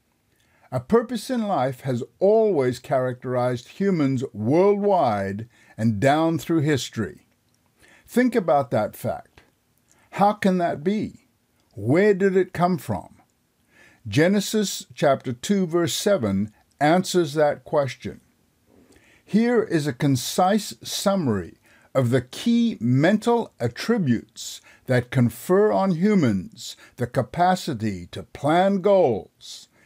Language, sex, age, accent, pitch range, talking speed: English, male, 60-79, American, 120-180 Hz, 105 wpm